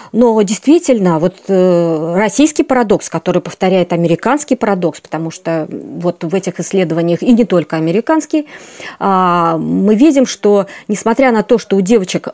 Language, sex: Russian, female